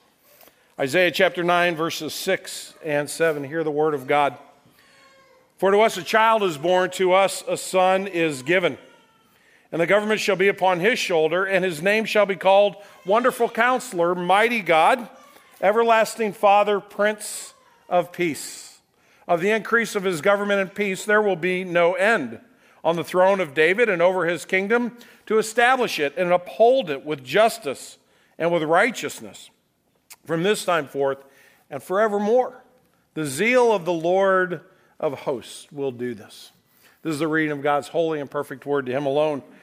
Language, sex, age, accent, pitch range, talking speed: English, male, 50-69, American, 145-200 Hz, 165 wpm